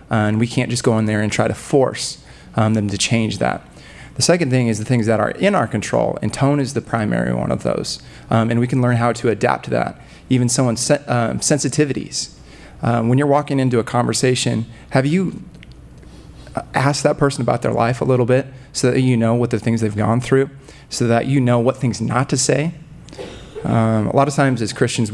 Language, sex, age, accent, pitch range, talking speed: English, male, 30-49, American, 110-130 Hz, 225 wpm